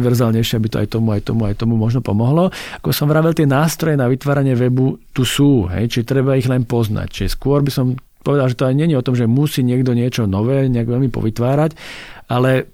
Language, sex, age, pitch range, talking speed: Slovak, male, 40-59, 115-145 Hz, 215 wpm